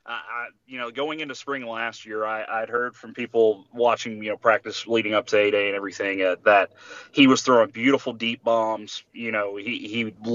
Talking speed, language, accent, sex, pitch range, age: 215 wpm, English, American, male, 110-135 Hz, 30-49